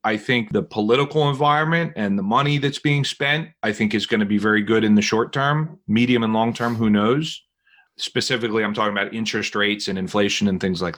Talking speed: 220 wpm